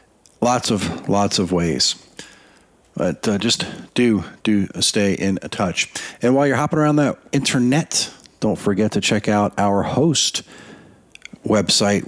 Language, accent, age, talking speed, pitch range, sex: English, American, 40-59, 140 wpm, 95-110 Hz, male